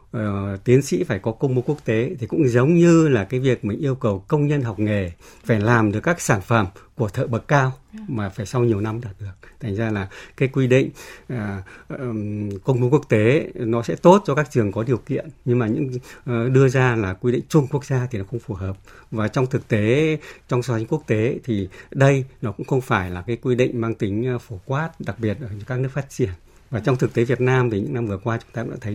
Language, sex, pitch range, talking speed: Vietnamese, male, 110-130 Hz, 250 wpm